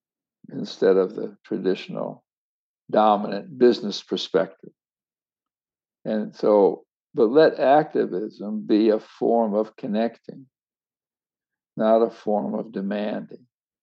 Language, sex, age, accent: English, male, 60-79, American